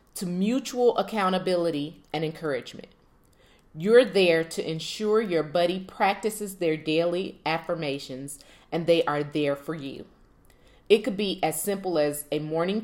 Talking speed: 135 wpm